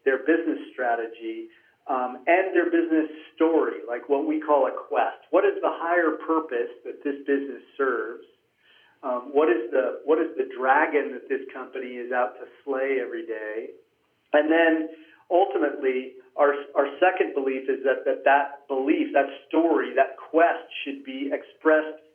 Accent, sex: American, male